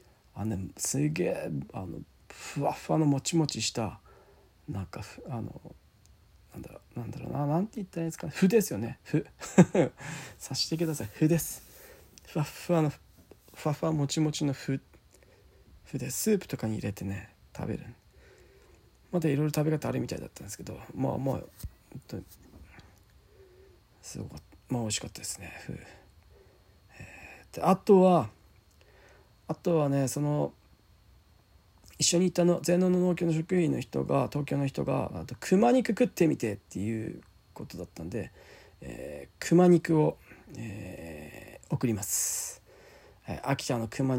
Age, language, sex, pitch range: 40-59, Japanese, male, 100-160 Hz